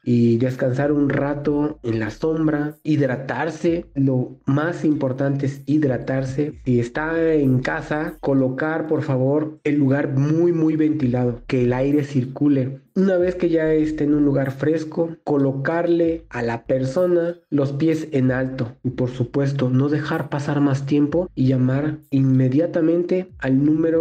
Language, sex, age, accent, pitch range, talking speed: Spanish, male, 40-59, Mexican, 125-155 Hz, 145 wpm